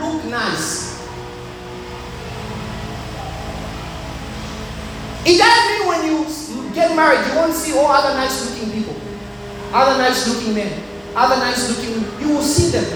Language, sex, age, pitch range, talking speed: English, male, 30-49, 200-340 Hz, 125 wpm